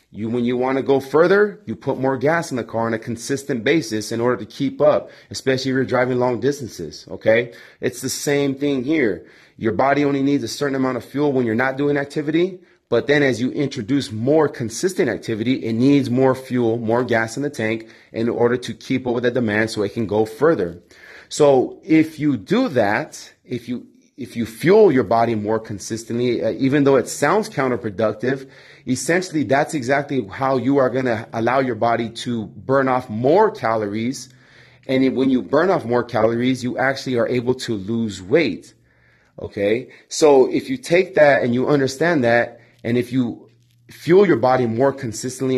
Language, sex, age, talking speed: English, male, 30-49, 195 wpm